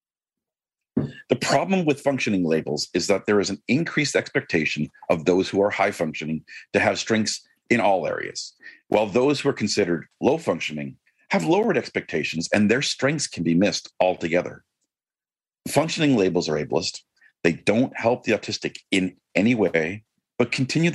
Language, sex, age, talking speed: English, male, 40-59, 150 wpm